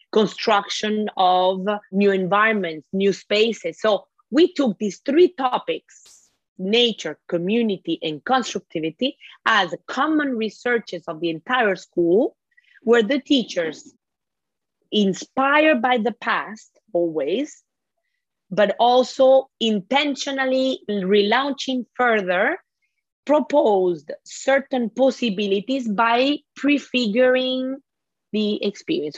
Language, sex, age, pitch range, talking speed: English, female, 30-49, 195-265 Hz, 90 wpm